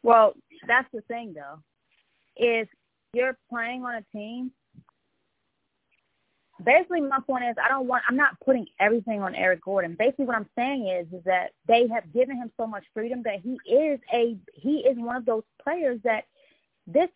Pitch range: 205-265 Hz